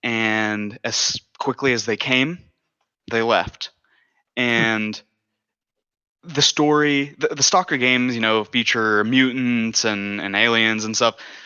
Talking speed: 125 wpm